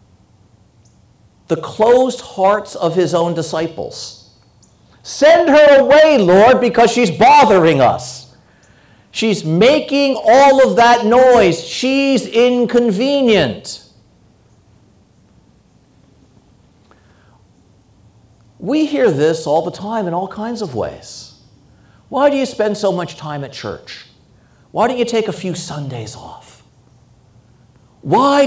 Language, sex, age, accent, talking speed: English, male, 50-69, American, 110 wpm